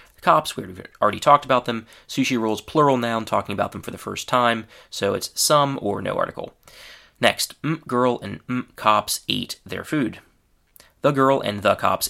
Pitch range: 105-135 Hz